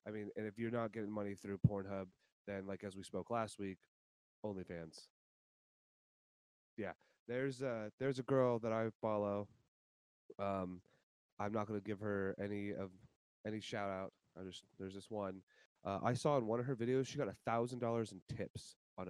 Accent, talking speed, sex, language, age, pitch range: American, 190 wpm, male, English, 20-39, 95-120 Hz